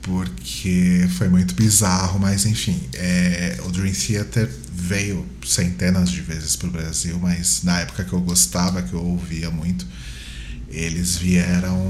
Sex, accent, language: male, Brazilian, Portuguese